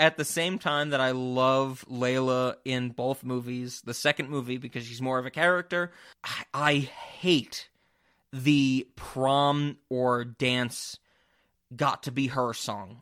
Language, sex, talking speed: English, male, 135 wpm